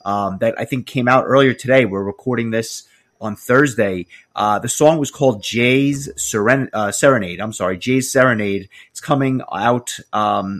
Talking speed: 170 wpm